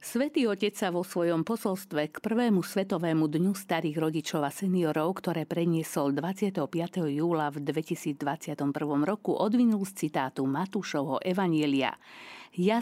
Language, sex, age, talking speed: Slovak, female, 50-69, 120 wpm